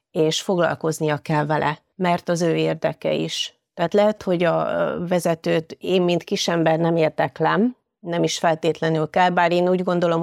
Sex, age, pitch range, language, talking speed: female, 30-49, 155-180 Hz, Hungarian, 160 wpm